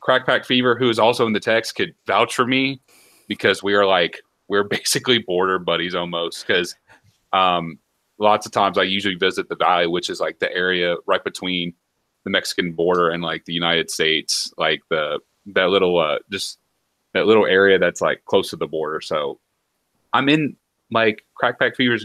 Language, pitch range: English, 90-135 Hz